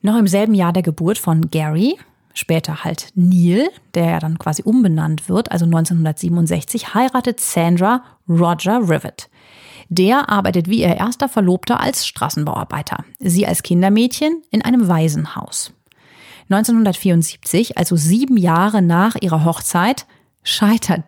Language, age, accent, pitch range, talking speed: German, 30-49, German, 170-220 Hz, 130 wpm